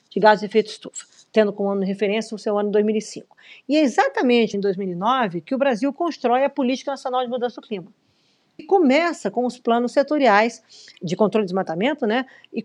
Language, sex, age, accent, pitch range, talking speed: Portuguese, female, 50-69, Brazilian, 205-260 Hz, 205 wpm